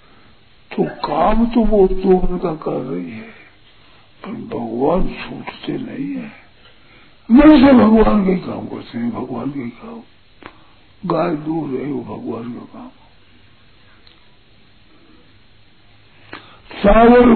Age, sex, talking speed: 50-69, male, 100 wpm